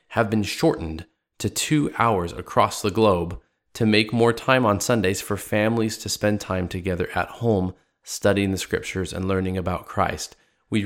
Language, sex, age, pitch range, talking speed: English, male, 20-39, 95-115 Hz, 170 wpm